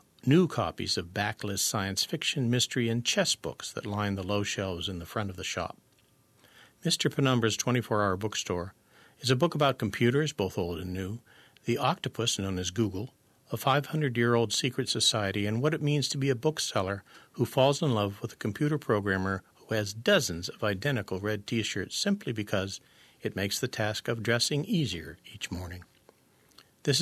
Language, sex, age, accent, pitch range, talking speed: English, male, 50-69, American, 100-130 Hz, 175 wpm